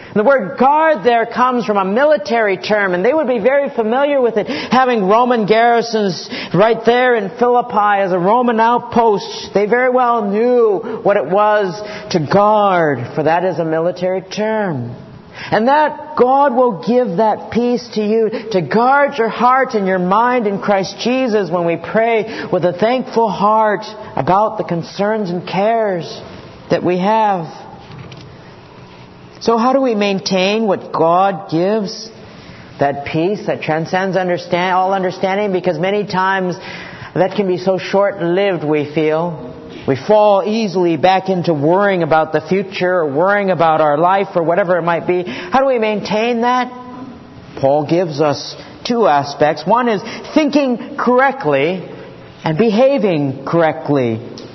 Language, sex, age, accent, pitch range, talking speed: English, male, 50-69, American, 180-235 Hz, 150 wpm